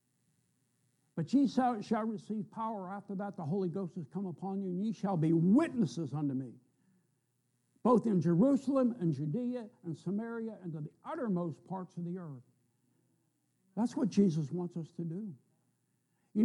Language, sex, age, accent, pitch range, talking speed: English, male, 60-79, American, 165-230 Hz, 160 wpm